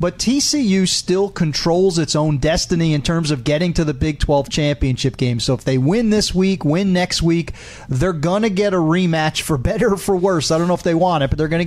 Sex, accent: male, American